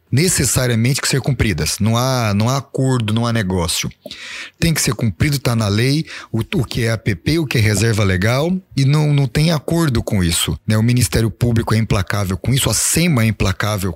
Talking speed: 200 wpm